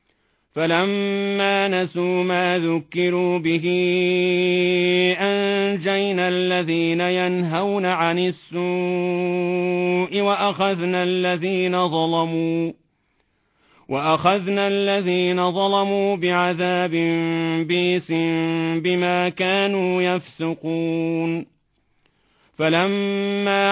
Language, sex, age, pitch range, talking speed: Arabic, male, 40-59, 170-185 Hz, 50 wpm